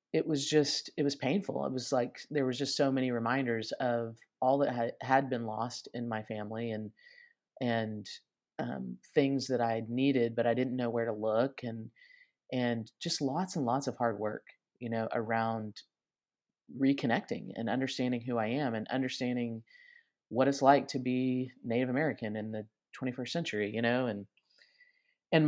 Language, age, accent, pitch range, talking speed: English, 30-49, American, 115-145 Hz, 170 wpm